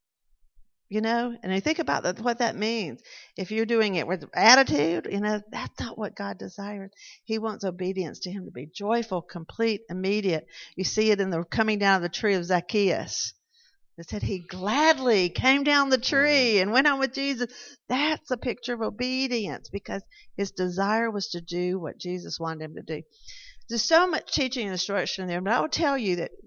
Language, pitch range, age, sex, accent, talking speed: English, 180-250 Hz, 50-69, female, American, 200 wpm